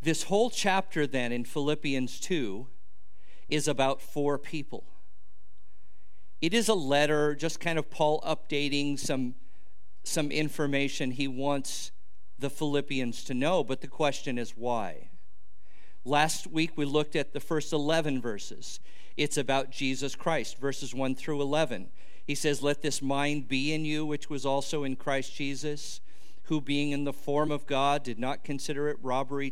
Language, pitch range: English, 130-150 Hz